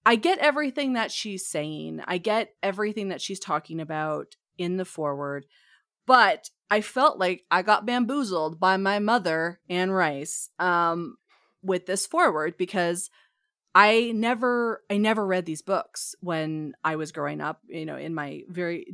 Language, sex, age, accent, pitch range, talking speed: English, female, 30-49, American, 160-200 Hz, 160 wpm